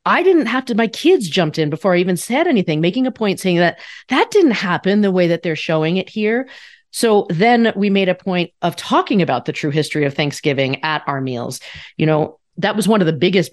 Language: English